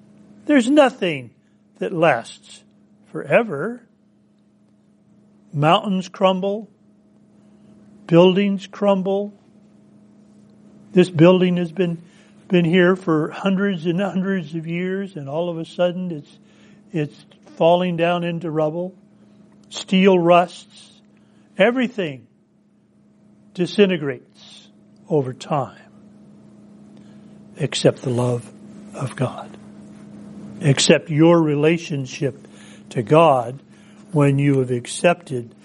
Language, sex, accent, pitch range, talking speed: English, male, American, 145-195 Hz, 90 wpm